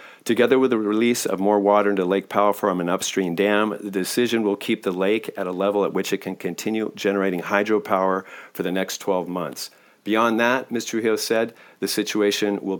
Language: English